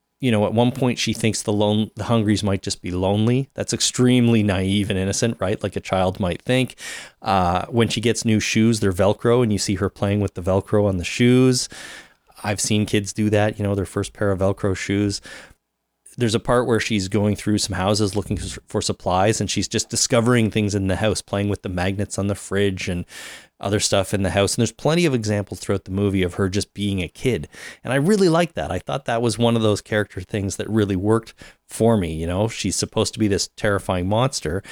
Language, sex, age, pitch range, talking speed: English, male, 30-49, 95-115 Hz, 230 wpm